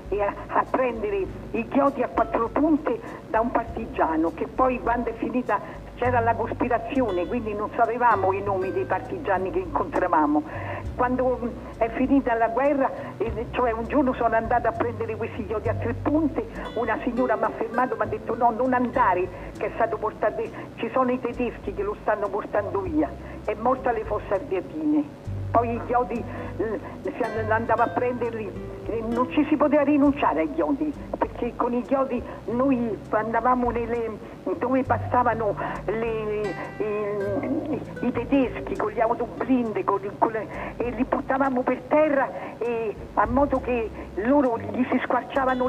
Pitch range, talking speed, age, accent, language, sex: 230-270 Hz, 160 wpm, 60-79, native, Italian, female